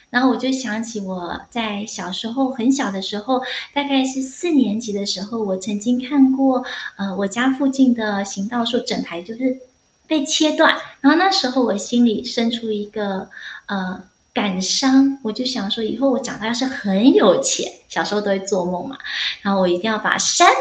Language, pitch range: Chinese, 205-265 Hz